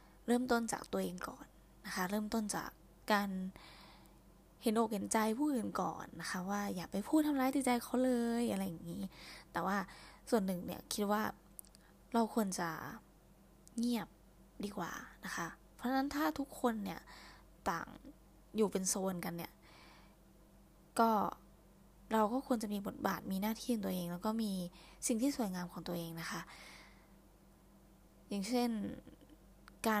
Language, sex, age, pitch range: Thai, female, 20-39, 185-240 Hz